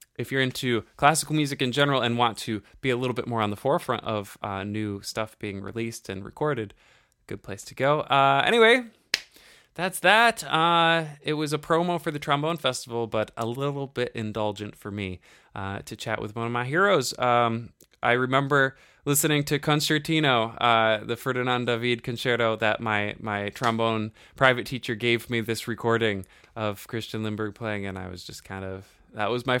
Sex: male